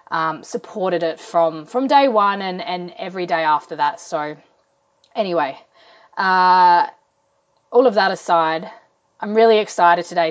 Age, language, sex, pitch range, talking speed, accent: 20-39, English, female, 195-240 Hz, 140 wpm, Australian